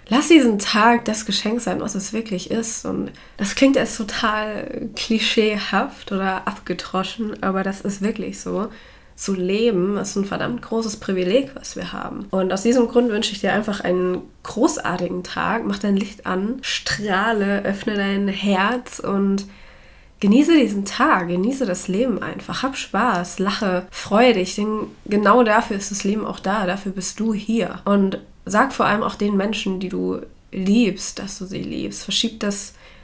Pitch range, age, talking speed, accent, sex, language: 195-230 Hz, 20-39, 170 wpm, German, female, German